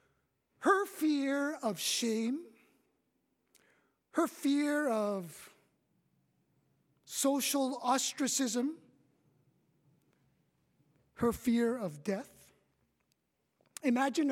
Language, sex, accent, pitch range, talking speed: English, male, American, 185-260 Hz, 60 wpm